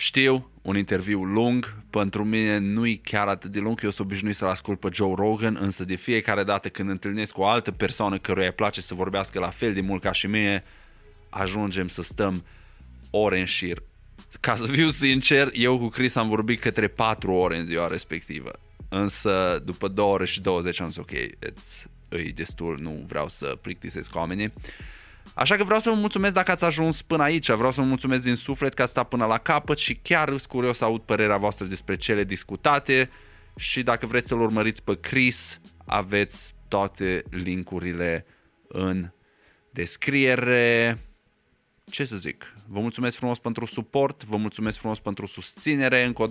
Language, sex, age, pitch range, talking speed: Romanian, male, 20-39, 95-120 Hz, 185 wpm